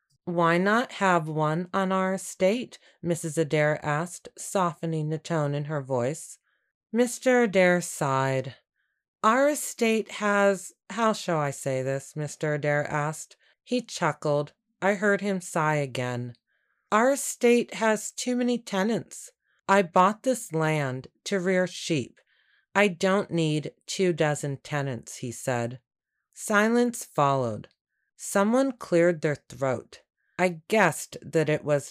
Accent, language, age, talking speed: American, English, 30-49, 130 wpm